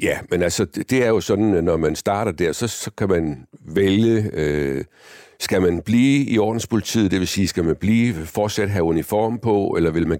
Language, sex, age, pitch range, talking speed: Danish, male, 60-79, 85-105 Hz, 205 wpm